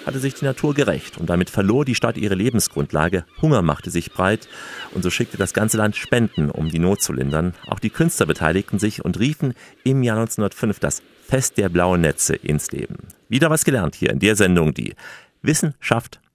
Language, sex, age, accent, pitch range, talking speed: German, male, 50-69, German, 80-120 Hz, 200 wpm